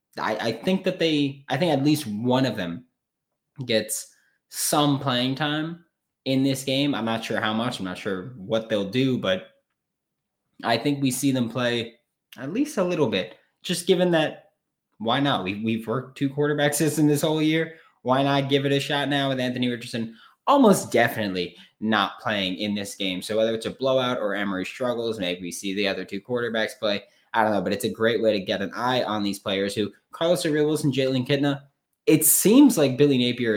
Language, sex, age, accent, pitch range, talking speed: English, male, 20-39, American, 110-150 Hz, 205 wpm